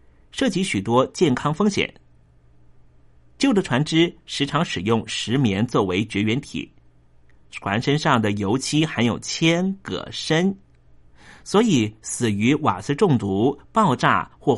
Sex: male